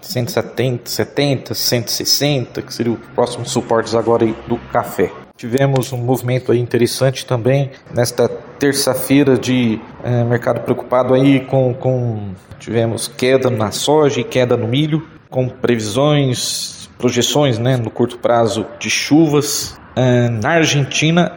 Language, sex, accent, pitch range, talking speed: Portuguese, male, Brazilian, 120-145 Hz, 130 wpm